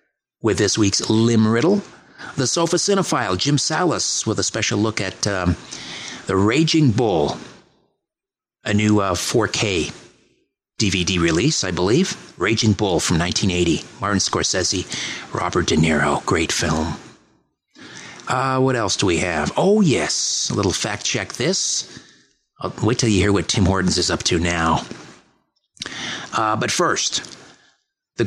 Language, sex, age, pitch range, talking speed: English, male, 50-69, 95-125 Hz, 140 wpm